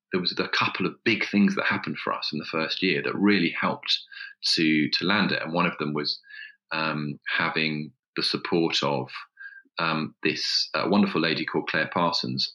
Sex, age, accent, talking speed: male, 40-59, British, 190 wpm